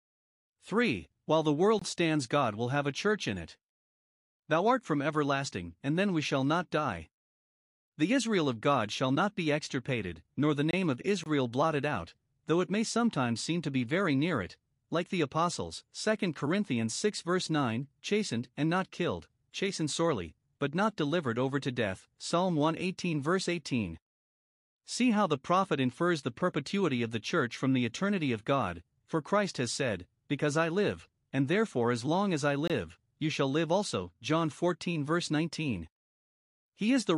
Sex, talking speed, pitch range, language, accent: male, 180 wpm, 130-180 Hz, English, American